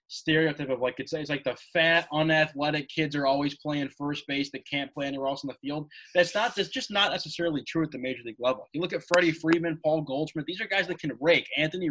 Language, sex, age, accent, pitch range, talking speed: English, male, 20-39, American, 140-165 Hz, 245 wpm